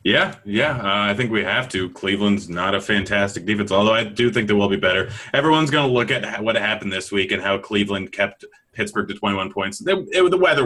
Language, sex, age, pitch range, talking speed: English, male, 30-49, 100-120 Hz, 225 wpm